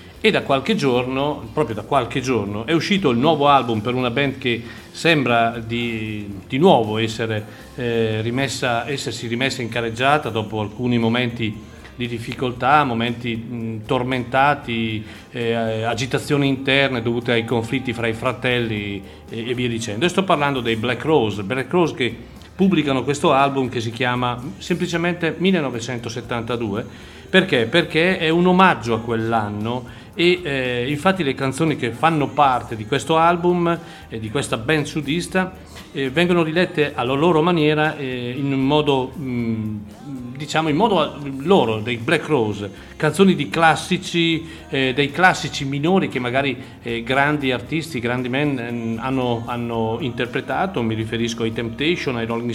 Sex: male